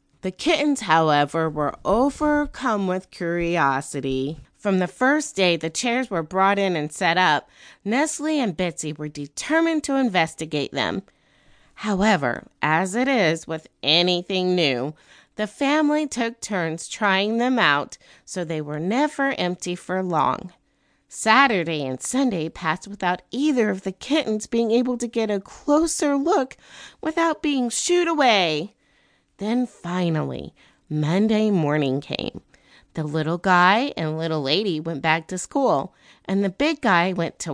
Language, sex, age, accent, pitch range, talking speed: English, female, 30-49, American, 160-250 Hz, 140 wpm